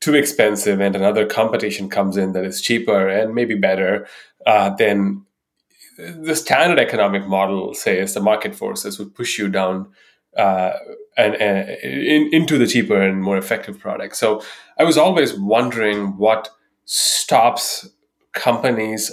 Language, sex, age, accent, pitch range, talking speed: English, male, 30-49, Indian, 100-125 Hz, 145 wpm